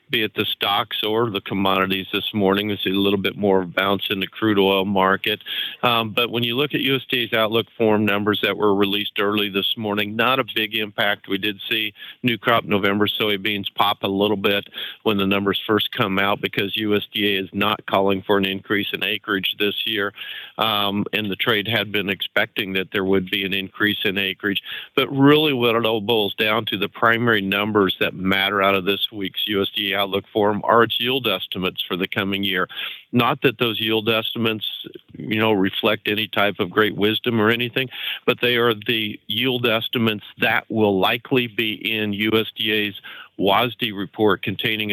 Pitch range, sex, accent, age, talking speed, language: 100-115 Hz, male, American, 50-69, 190 wpm, English